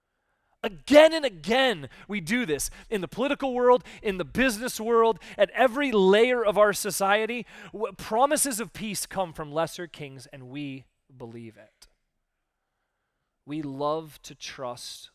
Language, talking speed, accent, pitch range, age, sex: English, 140 wpm, American, 145-195 Hz, 30-49, male